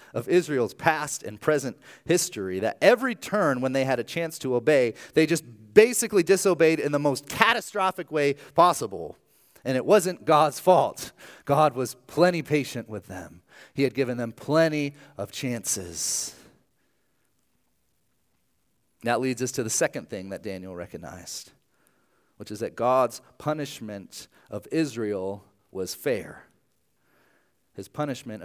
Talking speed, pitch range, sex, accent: 135 wpm, 110-160 Hz, male, American